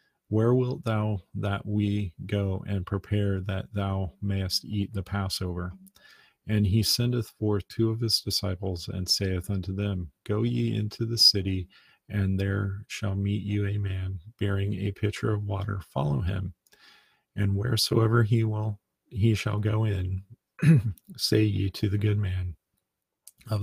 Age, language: 40-59, English